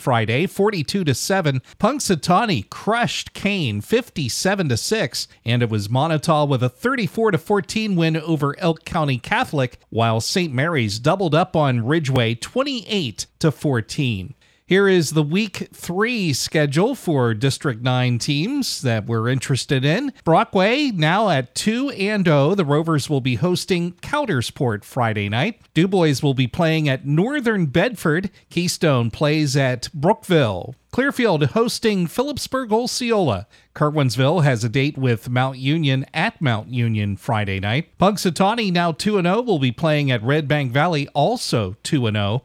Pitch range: 125-185 Hz